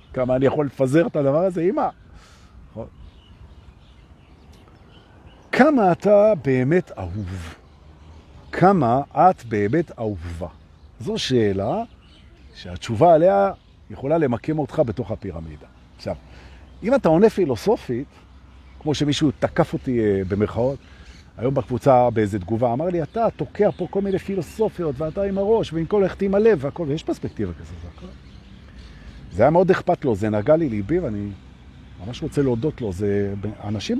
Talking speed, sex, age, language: 125 wpm, male, 50-69, Hebrew